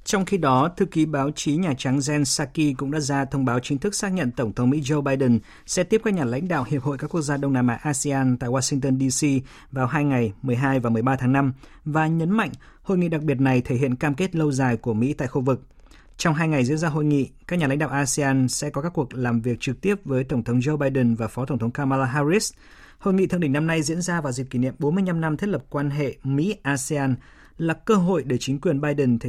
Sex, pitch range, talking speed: male, 130-160 Hz, 265 wpm